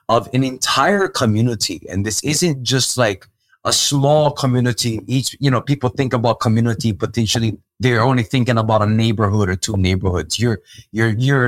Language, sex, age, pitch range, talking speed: English, male, 20-39, 115-145 Hz, 165 wpm